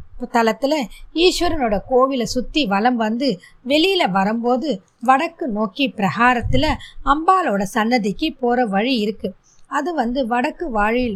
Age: 20-39